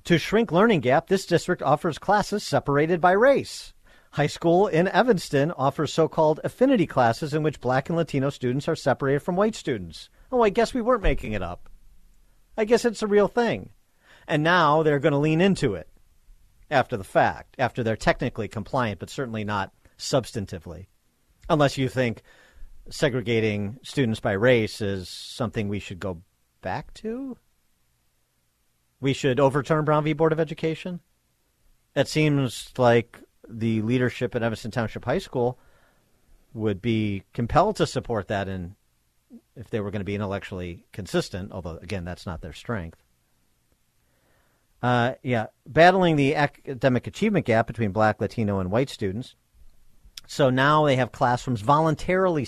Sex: male